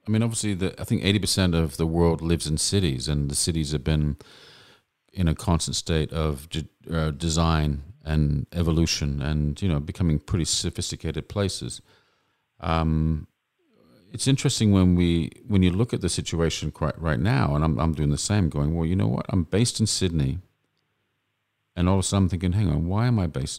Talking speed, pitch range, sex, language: 195 wpm, 75-100 Hz, male, English